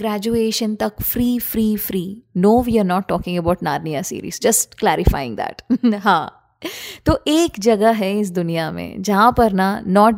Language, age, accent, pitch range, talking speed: Hindi, 20-39, native, 205-245 Hz, 165 wpm